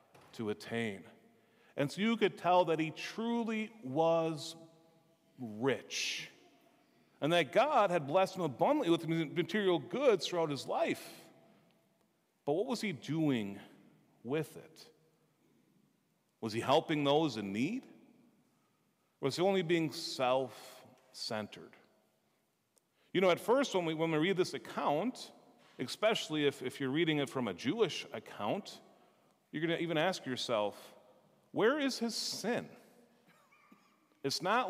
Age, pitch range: 40-59, 140-220 Hz